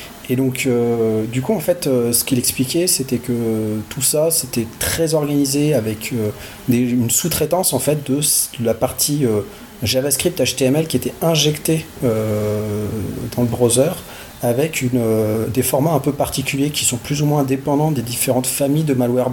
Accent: French